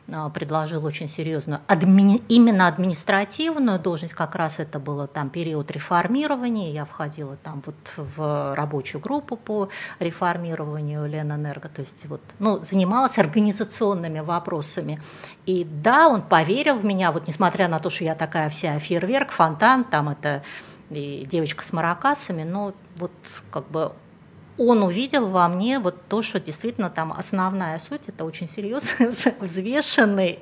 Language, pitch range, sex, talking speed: Russian, 160-230 Hz, female, 145 wpm